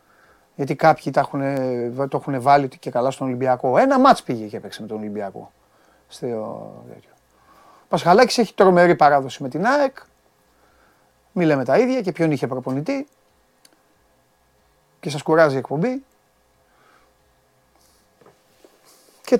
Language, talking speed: Greek, 120 wpm